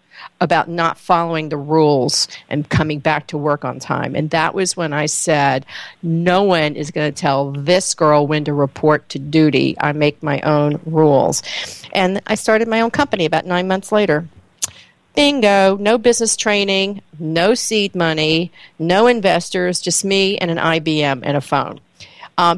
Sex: female